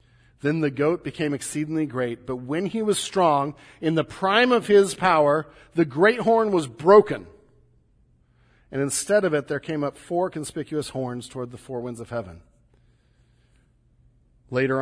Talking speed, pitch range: 160 wpm, 130-195 Hz